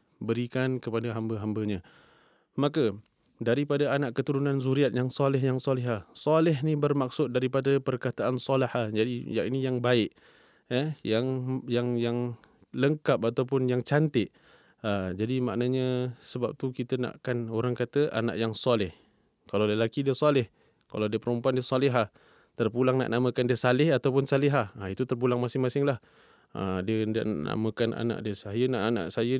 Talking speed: 145 wpm